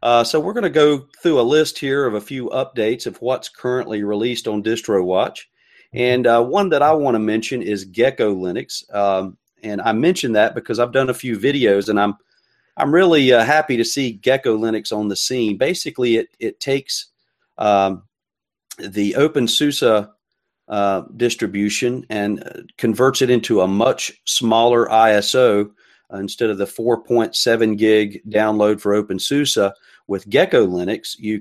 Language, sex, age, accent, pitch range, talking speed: English, male, 40-59, American, 105-125 Hz, 165 wpm